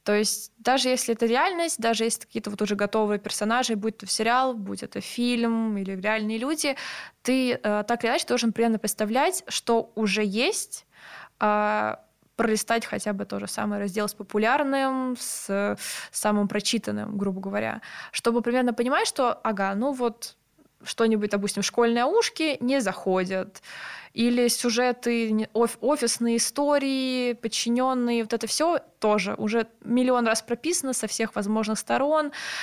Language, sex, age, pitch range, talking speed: Russian, female, 20-39, 210-250 Hz, 145 wpm